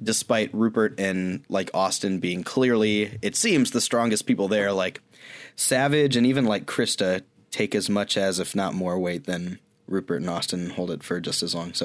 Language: English